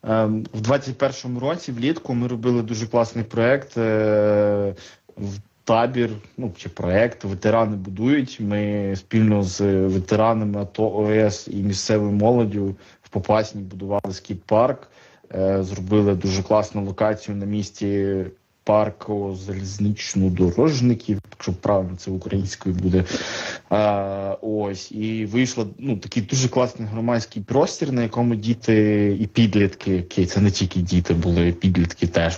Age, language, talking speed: 20-39, Ukrainian, 125 wpm